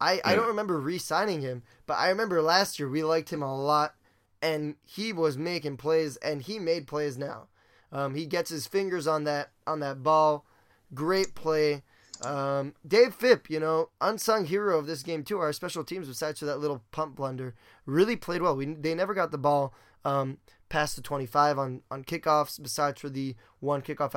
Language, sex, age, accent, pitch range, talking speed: English, male, 10-29, American, 140-170 Hz, 195 wpm